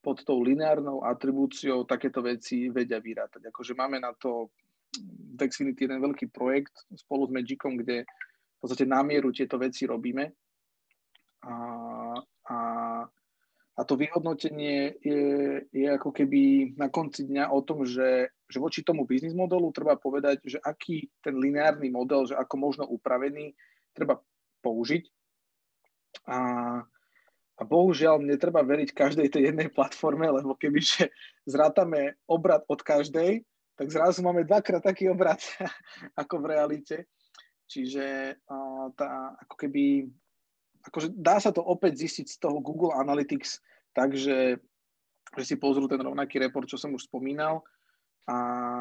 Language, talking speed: Slovak, 135 wpm